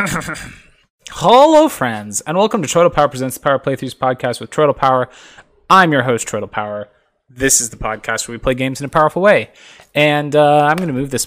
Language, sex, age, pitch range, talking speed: English, male, 20-39, 130-185 Hz, 200 wpm